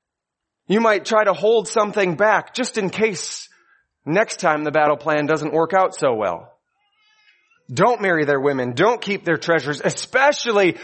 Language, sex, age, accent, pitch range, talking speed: English, male, 30-49, American, 135-205 Hz, 160 wpm